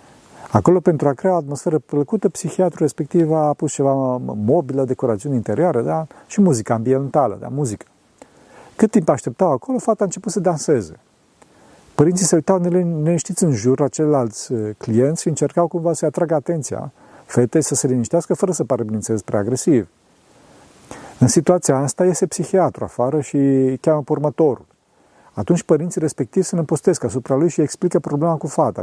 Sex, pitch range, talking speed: male, 130-170 Hz, 155 wpm